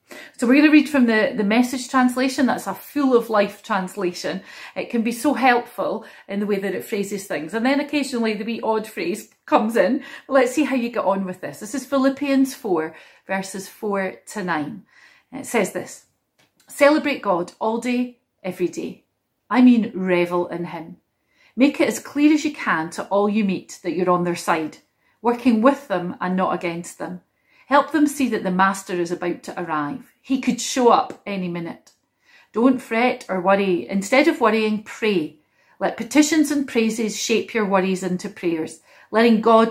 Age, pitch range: 40-59, 185-255 Hz